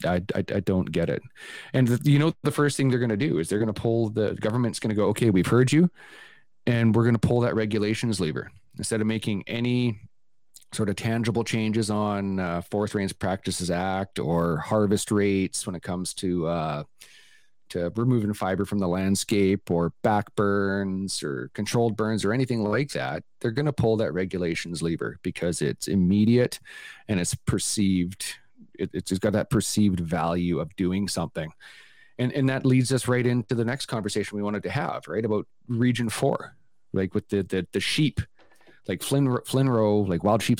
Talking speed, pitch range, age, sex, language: 195 wpm, 95-120 Hz, 40-59, male, English